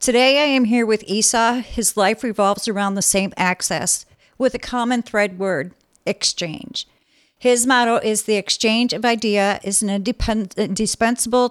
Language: English